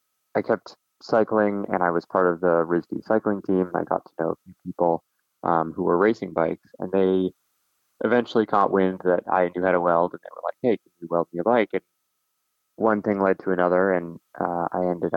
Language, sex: English, male